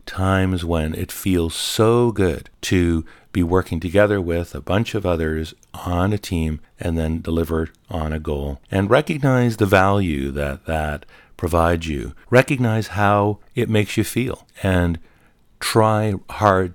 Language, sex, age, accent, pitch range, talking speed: English, male, 50-69, American, 80-110 Hz, 145 wpm